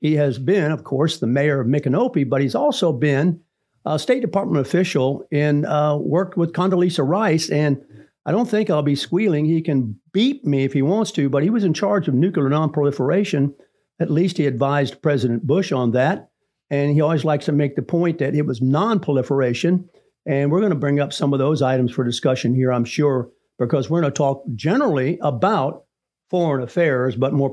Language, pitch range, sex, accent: English, 130-160 Hz, male, American